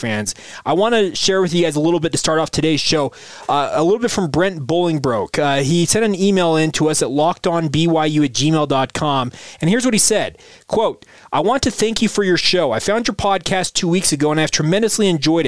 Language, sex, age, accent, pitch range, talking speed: English, male, 20-39, American, 145-190 Hz, 235 wpm